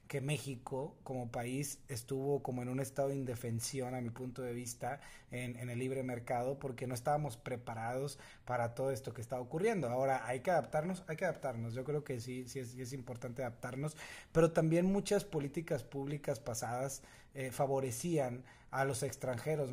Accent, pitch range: Mexican, 125-140 Hz